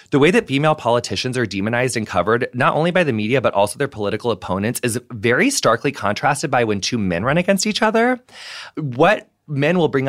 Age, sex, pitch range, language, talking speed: 20-39, male, 110-135 Hz, English, 210 wpm